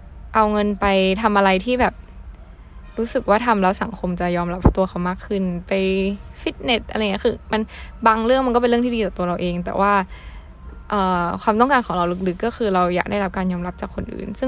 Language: Thai